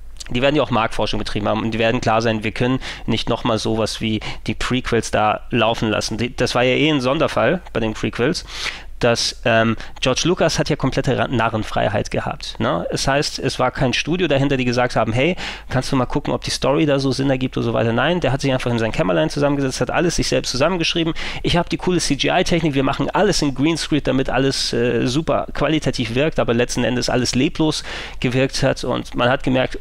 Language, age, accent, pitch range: German, 30-49, German, 115-145 Hz